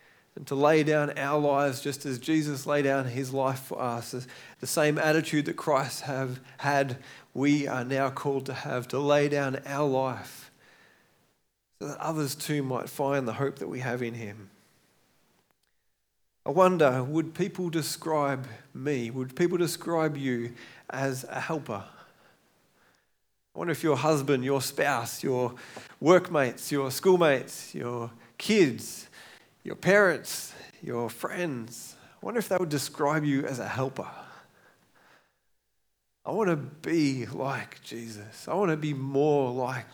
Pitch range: 130-150 Hz